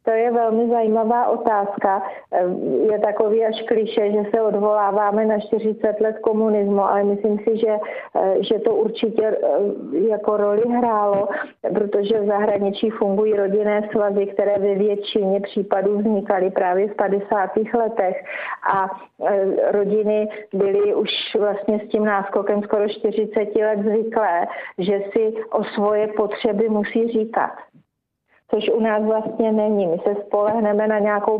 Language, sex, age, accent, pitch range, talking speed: Czech, female, 40-59, native, 200-220 Hz, 135 wpm